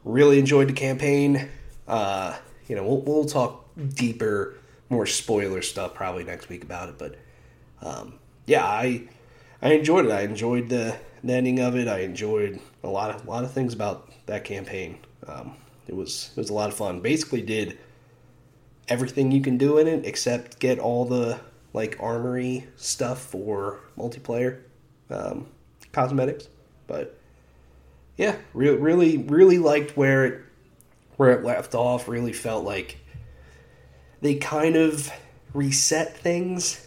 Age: 30-49